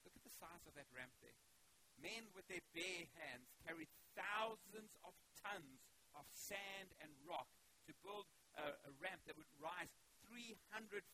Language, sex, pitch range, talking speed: English, male, 130-175 Hz, 160 wpm